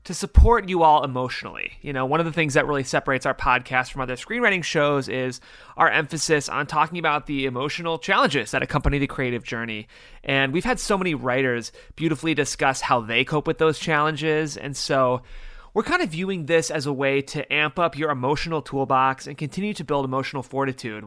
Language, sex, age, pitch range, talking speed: English, male, 30-49, 125-160 Hz, 200 wpm